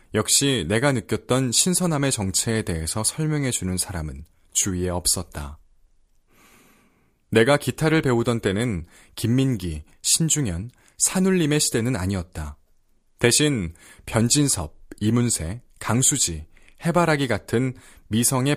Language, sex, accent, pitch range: Korean, male, native, 90-135 Hz